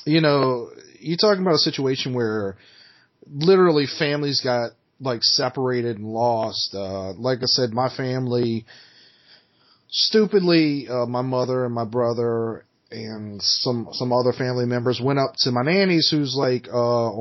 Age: 30-49